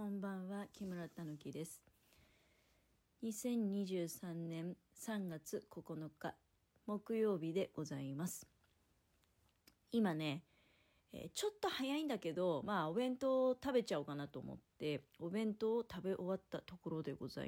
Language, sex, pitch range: Japanese, female, 155-230 Hz